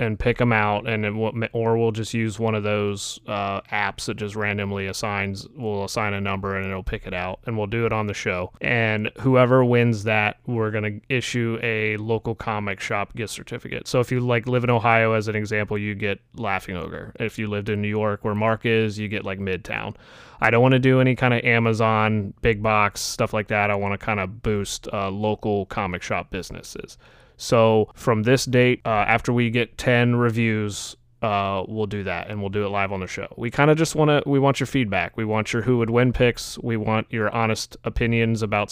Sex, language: male, English